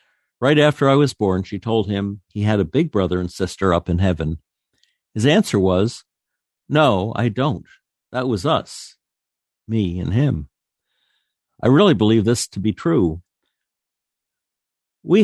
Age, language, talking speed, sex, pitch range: 60-79, English, 150 wpm, male, 95-115 Hz